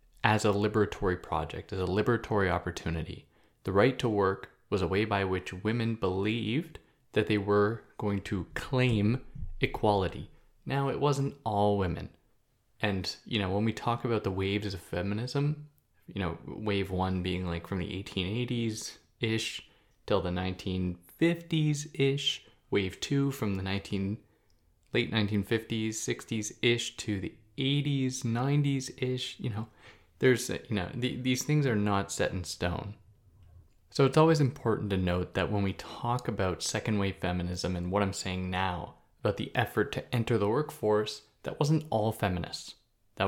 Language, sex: English, male